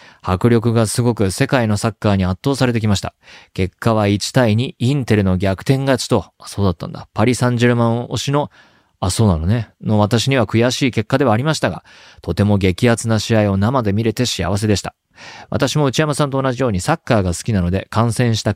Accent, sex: native, male